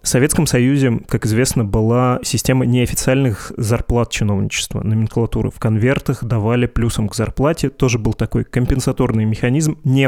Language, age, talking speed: Russian, 20-39, 135 wpm